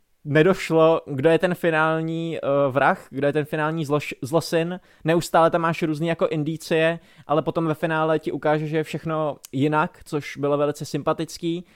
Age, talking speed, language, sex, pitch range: 20-39, 170 wpm, Czech, male, 145-160 Hz